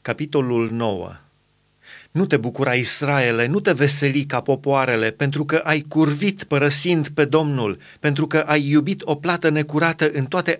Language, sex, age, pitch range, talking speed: Romanian, male, 30-49, 135-170 Hz, 155 wpm